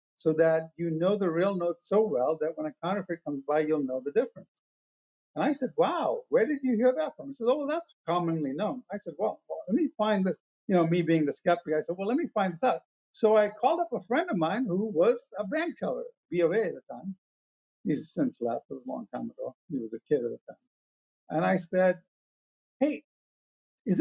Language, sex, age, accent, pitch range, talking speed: English, male, 50-69, American, 160-215 Hz, 235 wpm